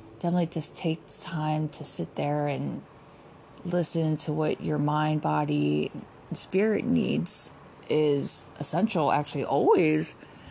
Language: English